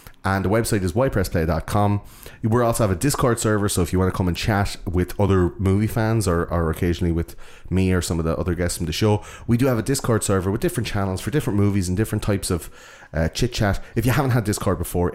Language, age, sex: English, 30-49, male